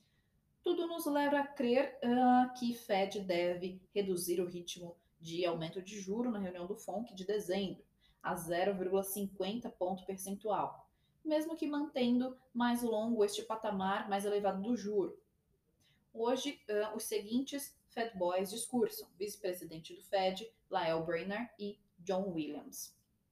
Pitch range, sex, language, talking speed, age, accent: 180-240 Hz, female, Portuguese, 135 wpm, 20-39, Brazilian